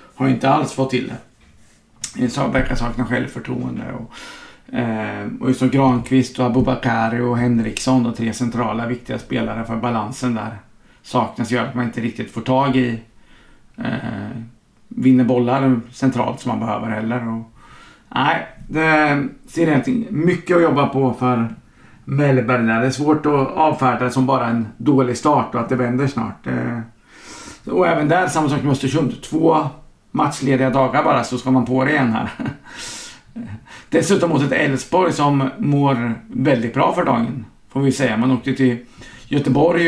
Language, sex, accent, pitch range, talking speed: English, male, Swedish, 120-140 Hz, 165 wpm